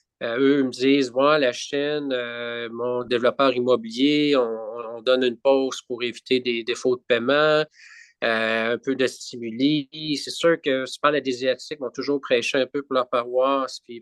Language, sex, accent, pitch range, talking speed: French, male, Canadian, 120-140 Hz, 195 wpm